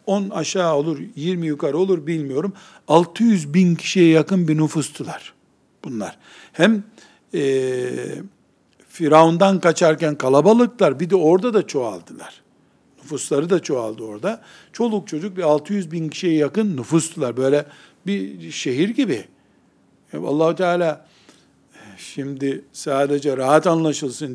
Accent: native